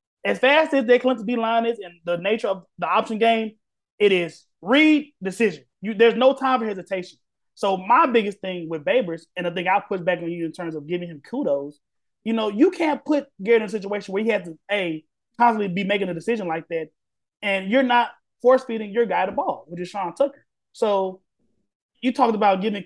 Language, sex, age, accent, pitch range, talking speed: English, male, 20-39, American, 180-240 Hz, 220 wpm